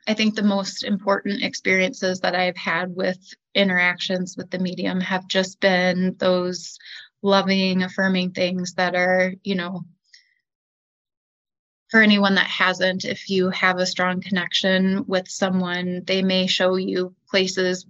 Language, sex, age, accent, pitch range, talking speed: English, female, 20-39, American, 180-205 Hz, 140 wpm